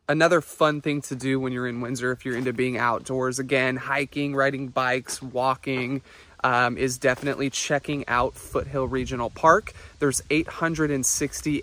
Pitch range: 125-145 Hz